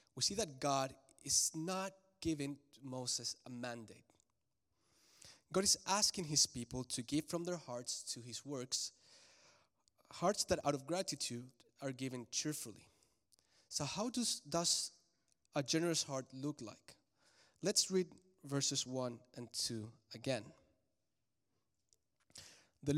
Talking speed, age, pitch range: 125 wpm, 30-49, 125-160 Hz